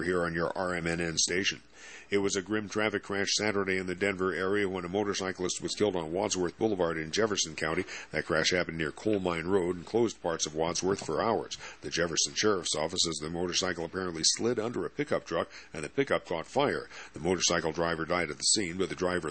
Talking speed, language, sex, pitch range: 215 wpm, English, male, 80-95 Hz